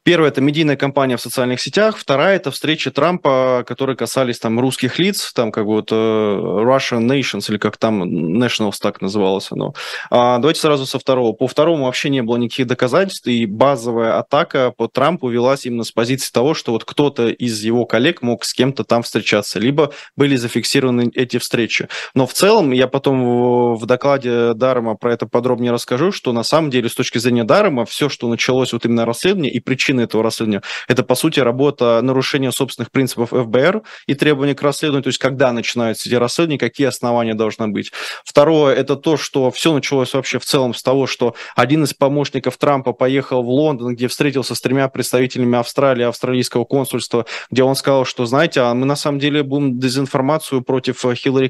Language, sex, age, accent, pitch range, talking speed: Russian, male, 20-39, native, 120-140 Hz, 185 wpm